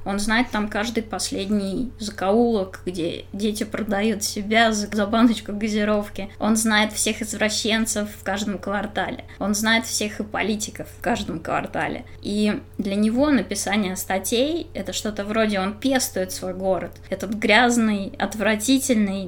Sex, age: female, 20-39